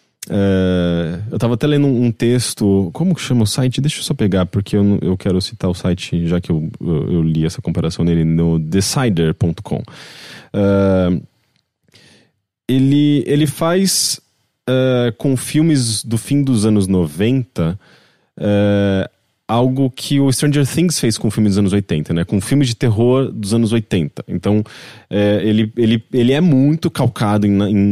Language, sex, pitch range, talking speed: Portuguese, male, 100-130 Hz, 155 wpm